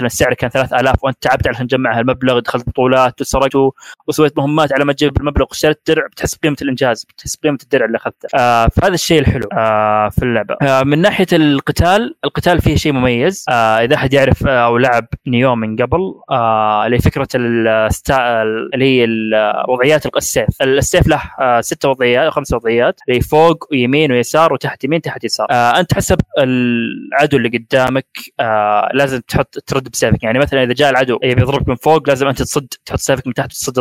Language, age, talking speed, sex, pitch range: Arabic, 20-39, 185 wpm, male, 120-145 Hz